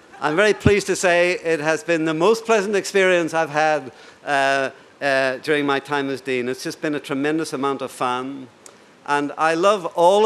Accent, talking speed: British, 195 wpm